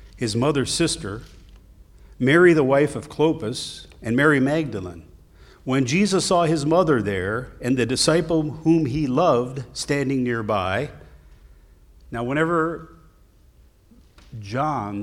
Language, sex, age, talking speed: English, male, 50-69, 110 wpm